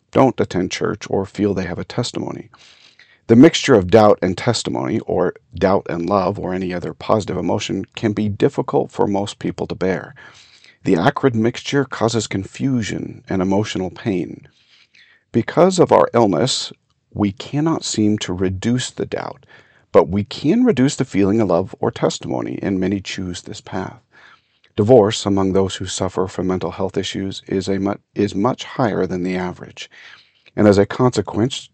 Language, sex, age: English, male, 50-69